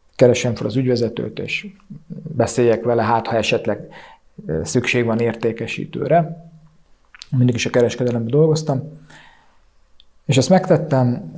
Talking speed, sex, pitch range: 110 wpm, male, 115-140 Hz